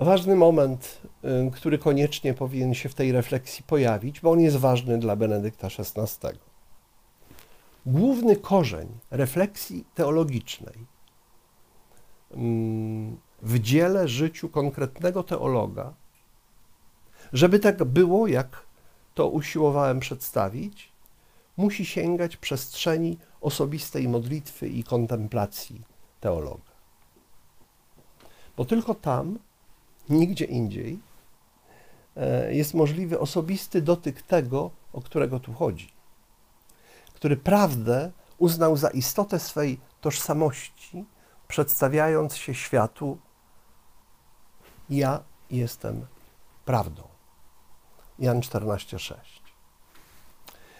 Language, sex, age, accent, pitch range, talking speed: Polish, male, 50-69, native, 120-170 Hz, 85 wpm